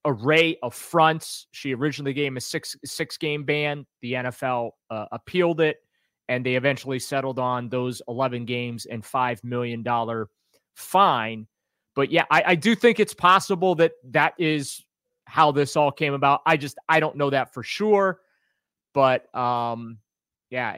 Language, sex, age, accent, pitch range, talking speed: English, male, 30-49, American, 125-160 Hz, 160 wpm